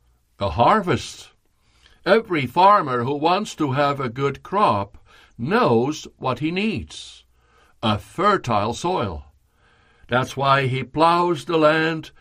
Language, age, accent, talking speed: English, 60-79, American, 120 wpm